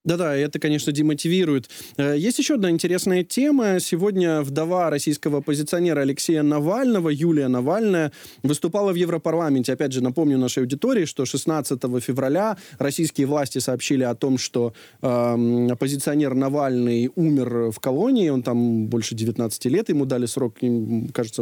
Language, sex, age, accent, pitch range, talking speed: Ukrainian, male, 20-39, native, 135-175 Hz, 135 wpm